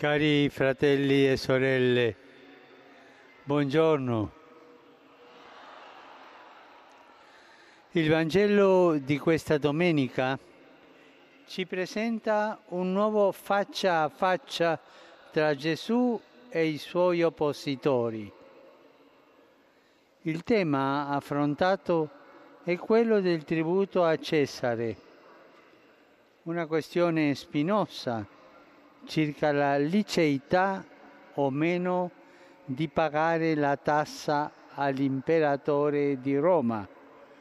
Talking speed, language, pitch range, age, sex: 75 wpm, Italian, 140-175 Hz, 60-79, male